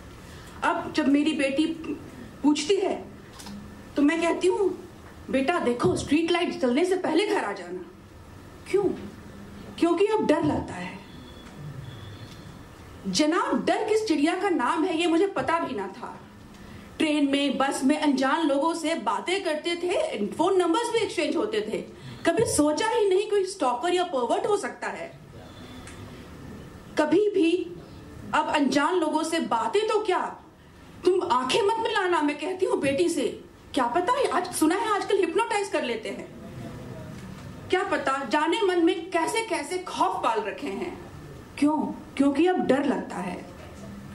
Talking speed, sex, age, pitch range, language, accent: 150 wpm, female, 40-59, 305-385 Hz, Hindi, native